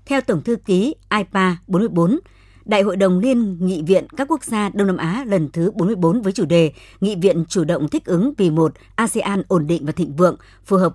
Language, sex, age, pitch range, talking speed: Vietnamese, male, 60-79, 170-210 Hz, 220 wpm